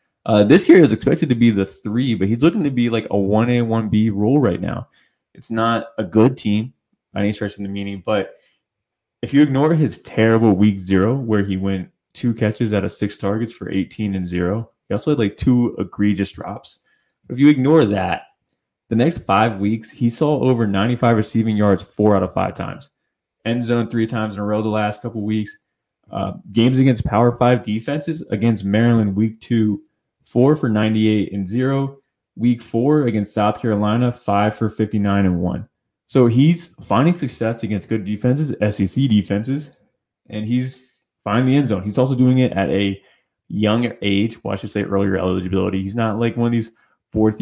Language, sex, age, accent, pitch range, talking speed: English, male, 20-39, American, 100-120 Hz, 190 wpm